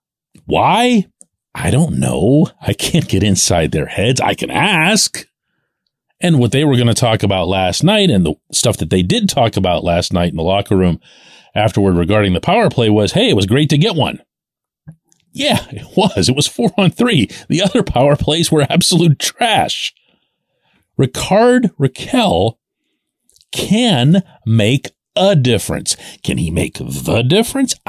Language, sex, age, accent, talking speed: English, male, 40-59, American, 165 wpm